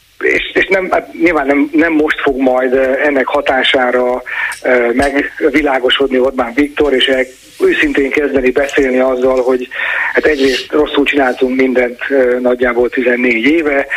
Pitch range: 130-155 Hz